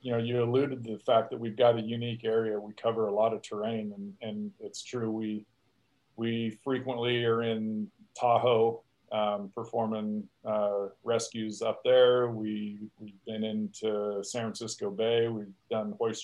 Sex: male